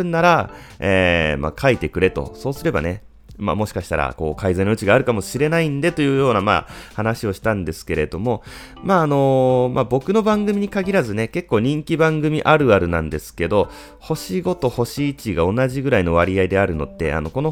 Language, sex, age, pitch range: Japanese, male, 30-49, 90-140 Hz